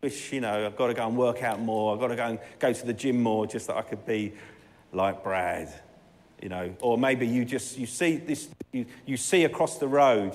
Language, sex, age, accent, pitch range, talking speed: English, male, 40-59, British, 110-165 Hz, 255 wpm